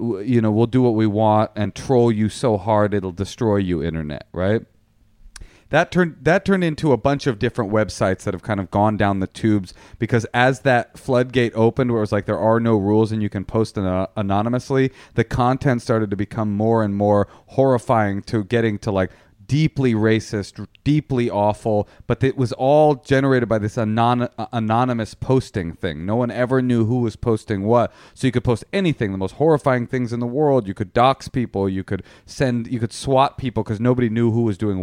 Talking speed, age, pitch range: 205 wpm, 40-59, 105-125 Hz